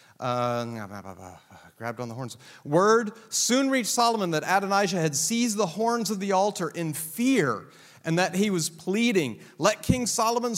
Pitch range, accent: 125-175 Hz, American